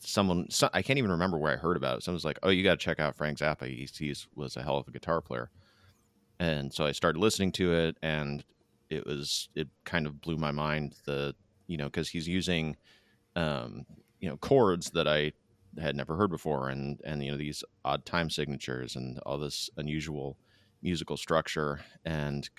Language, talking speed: English, 200 wpm